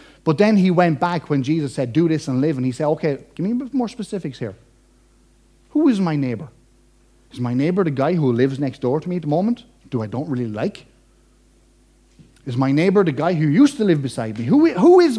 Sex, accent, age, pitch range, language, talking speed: male, Irish, 30-49, 160-255 Hz, English, 235 wpm